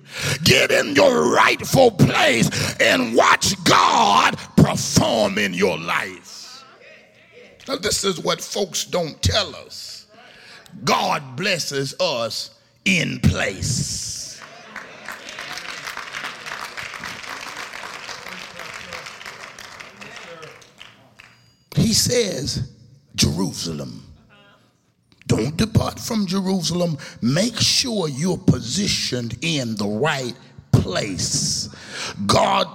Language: English